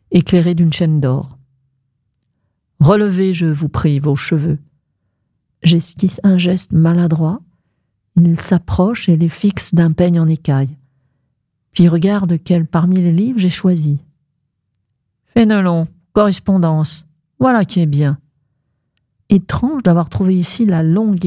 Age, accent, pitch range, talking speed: 50-69, French, 140-180 Hz, 120 wpm